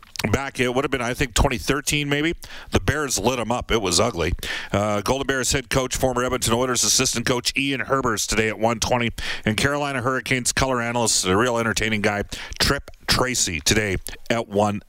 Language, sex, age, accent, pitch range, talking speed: English, male, 40-59, American, 110-135 Hz, 185 wpm